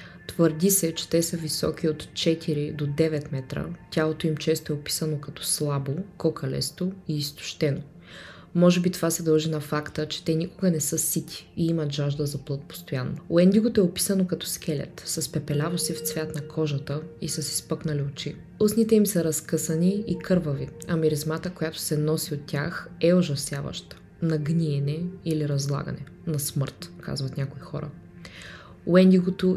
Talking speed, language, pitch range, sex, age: 165 wpm, Bulgarian, 150-175 Hz, female, 20-39